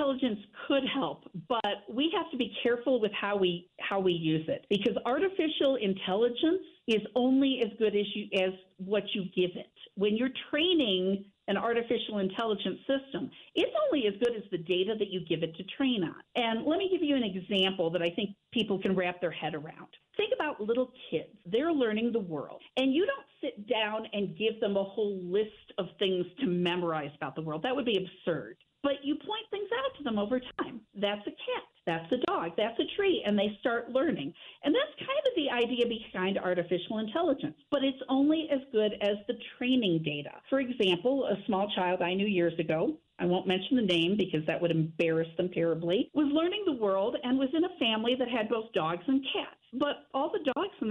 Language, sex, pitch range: English, female, 190-275 Hz